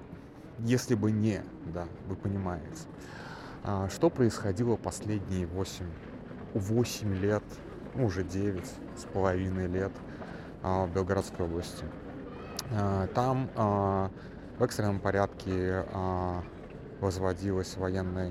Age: 30-49